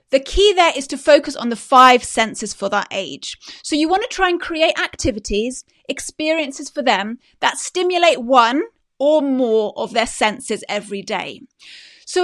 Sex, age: female, 30-49